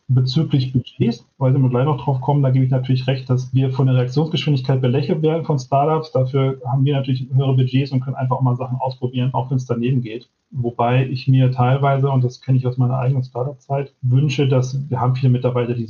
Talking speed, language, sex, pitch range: 225 wpm, German, male, 125-135 Hz